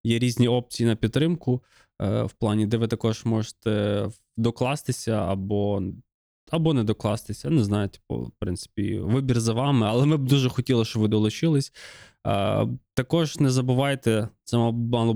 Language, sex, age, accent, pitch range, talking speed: Ukrainian, male, 20-39, native, 105-125 Hz, 155 wpm